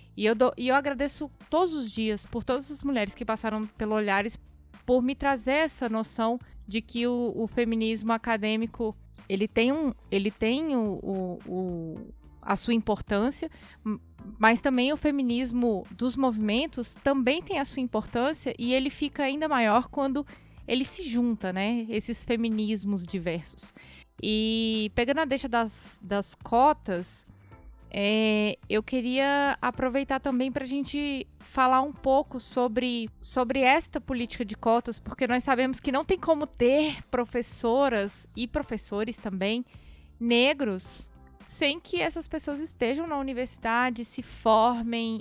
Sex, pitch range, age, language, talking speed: female, 215-260 Hz, 20-39, Portuguese, 145 wpm